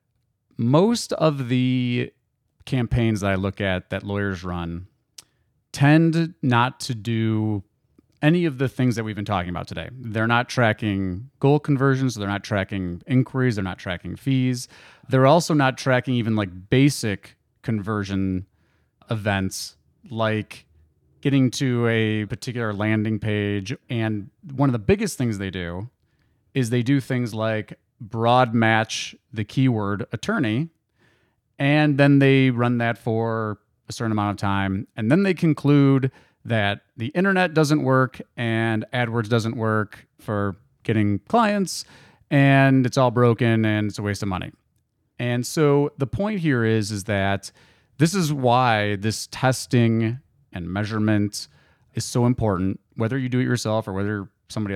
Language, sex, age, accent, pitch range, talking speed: English, male, 30-49, American, 105-130 Hz, 150 wpm